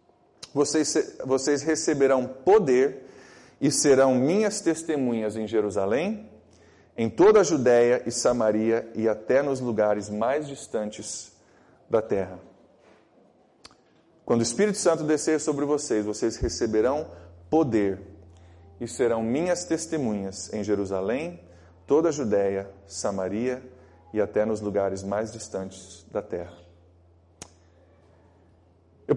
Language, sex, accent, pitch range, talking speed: Portuguese, male, Brazilian, 100-125 Hz, 105 wpm